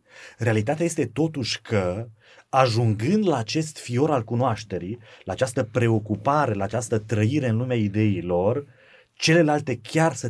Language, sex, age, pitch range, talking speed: Romanian, male, 30-49, 105-145 Hz, 130 wpm